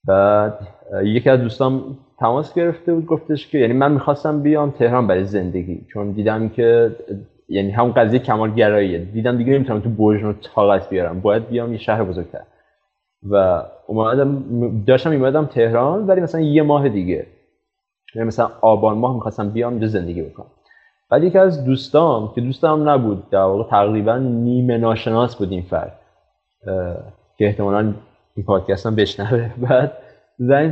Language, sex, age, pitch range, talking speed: Persian, male, 20-39, 115-140 Hz, 150 wpm